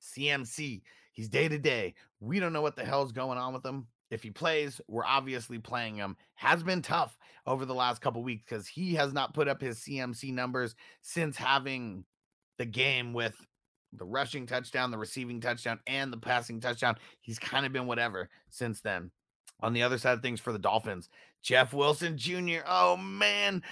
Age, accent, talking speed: 30-49, American, 190 wpm